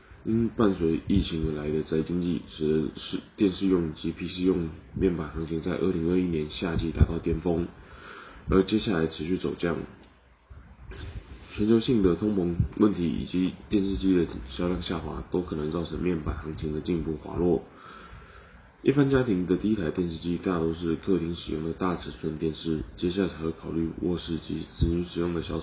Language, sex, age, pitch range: Chinese, male, 20-39, 80-95 Hz